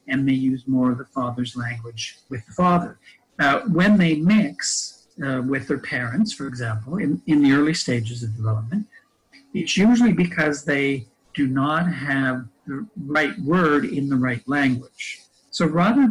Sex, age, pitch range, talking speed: male, 60-79, 130-175 Hz, 165 wpm